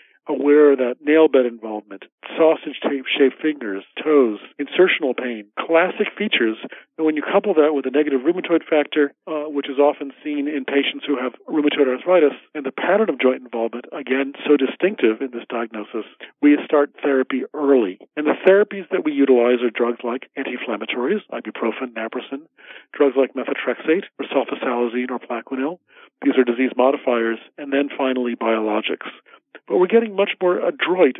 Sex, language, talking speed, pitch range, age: male, English, 160 wpm, 125-145 Hz, 40-59